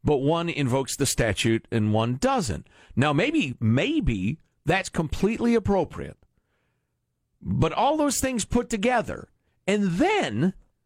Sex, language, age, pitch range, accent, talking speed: male, English, 50-69, 120-185 Hz, American, 120 wpm